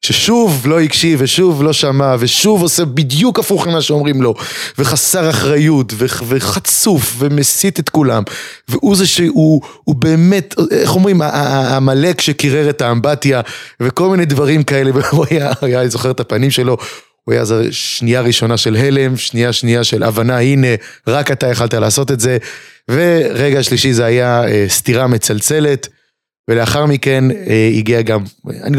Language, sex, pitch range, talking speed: Hebrew, male, 110-145 Hz, 150 wpm